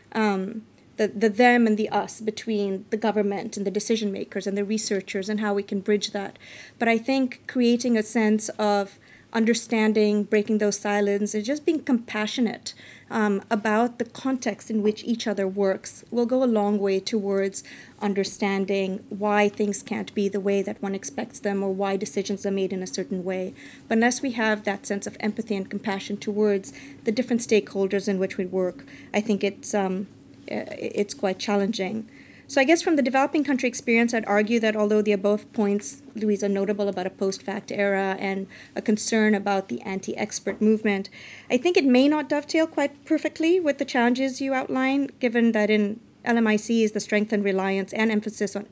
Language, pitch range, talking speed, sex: English, 200-230 Hz, 185 wpm, female